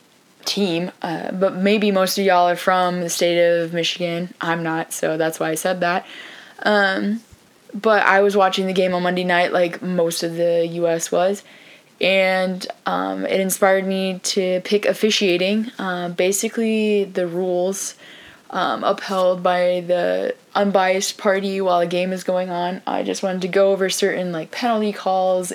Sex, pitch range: female, 170-195 Hz